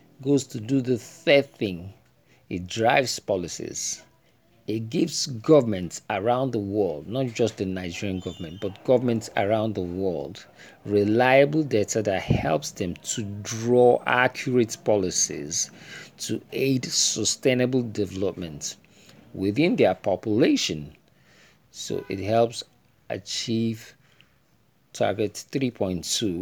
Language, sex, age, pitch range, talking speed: English, male, 50-69, 100-125 Hz, 105 wpm